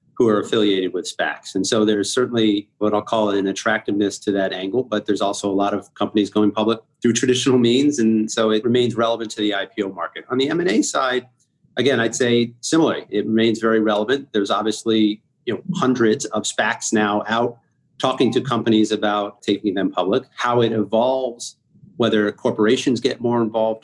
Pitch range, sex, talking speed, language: 105-120 Hz, male, 185 wpm, English